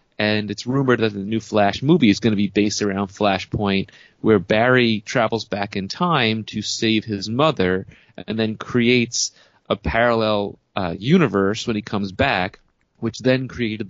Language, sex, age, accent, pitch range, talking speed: English, male, 30-49, American, 100-120 Hz, 170 wpm